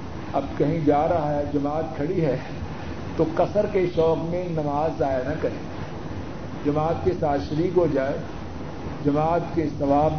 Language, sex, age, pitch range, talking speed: Urdu, male, 50-69, 130-160 Hz, 145 wpm